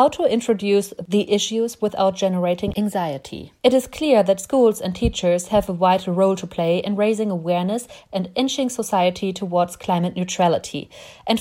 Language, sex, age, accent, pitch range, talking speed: English, female, 30-49, German, 190-245 Hz, 165 wpm